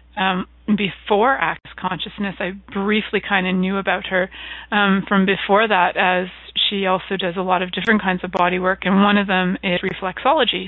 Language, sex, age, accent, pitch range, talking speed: English, female, 30-49, American, 180-200 Hz, 185 wpm